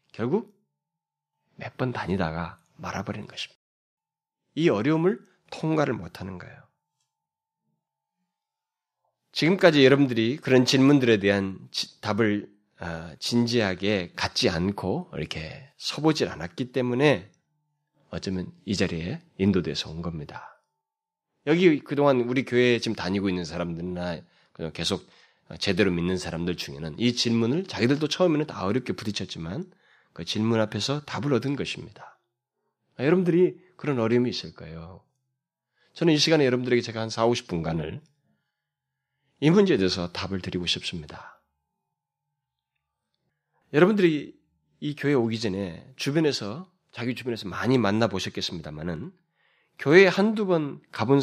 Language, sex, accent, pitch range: Korean, male, native, 95-155 Hz